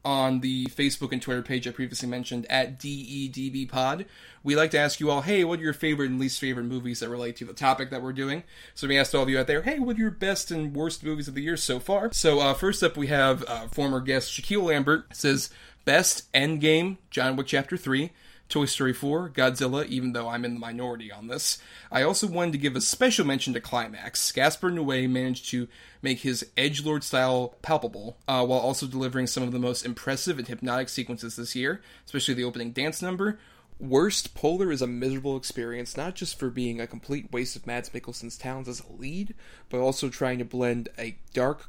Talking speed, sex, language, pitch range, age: 215 wpm, male, English, 125-150 Hz, 30-49